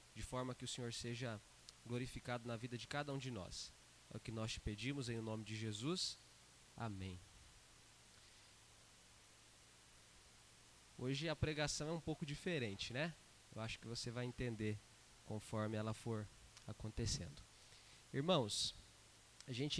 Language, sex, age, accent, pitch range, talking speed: Portuguese, male, 20-39, Brazilian, 110-155 Hz, 140 wpm